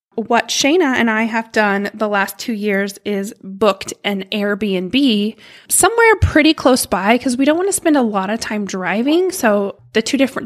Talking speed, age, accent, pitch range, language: 190 wpm, 20-39, American, 200-255 Hz, English